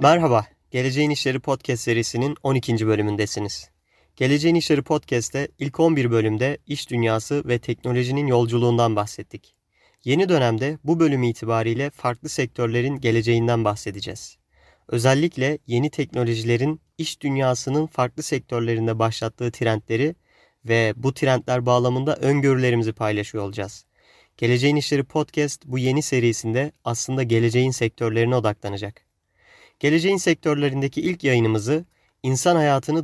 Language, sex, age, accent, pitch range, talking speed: Turkish, male, 30-49, native, 115-145 Hz, 110 wpm